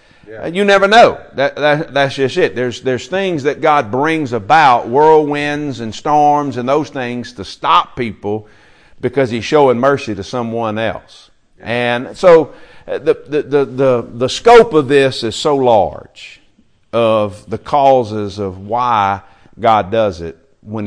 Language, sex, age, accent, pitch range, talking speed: English, male, 50-69, American, 105-135 Hz, 150 wpm